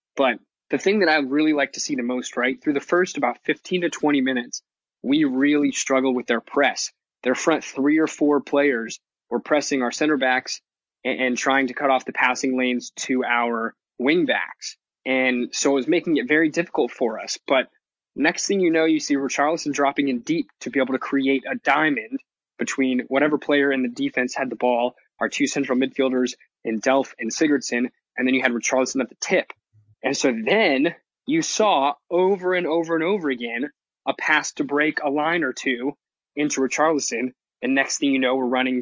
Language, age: English, 20-39